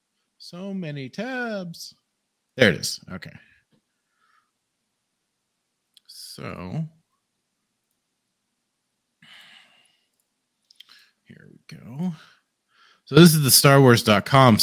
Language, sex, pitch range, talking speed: English, male, 110-155 Hz, 65 wpm